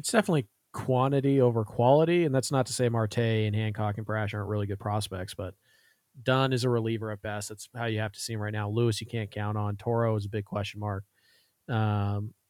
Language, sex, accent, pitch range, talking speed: English, male, American, 110-125 Hz, 225 wpm